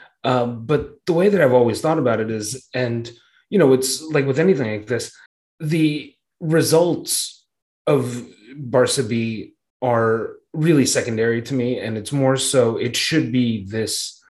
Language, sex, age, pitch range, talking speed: English, male, 30-49, 115-140 Hz, 160 wpm